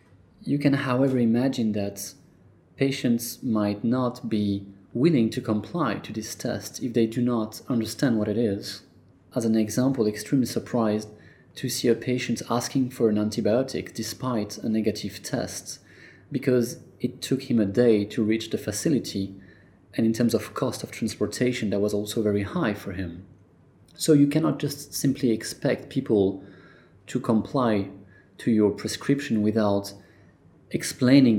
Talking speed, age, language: 150 wpm, 30-49, English